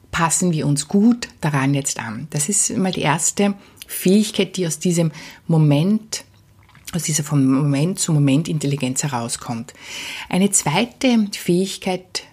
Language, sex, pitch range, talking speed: German, female, 145-200 Hz, 135 wpm